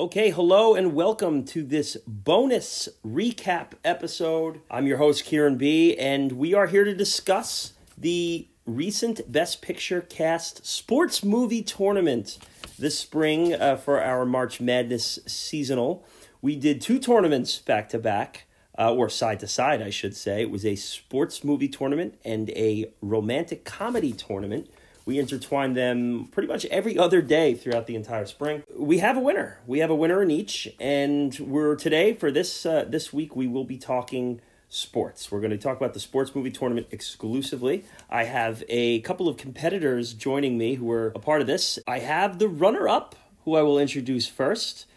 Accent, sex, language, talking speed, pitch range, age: American, male, English, 165 wpm, 125-165 Hz, 30-49